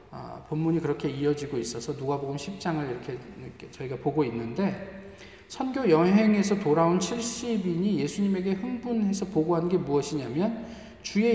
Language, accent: Korean, native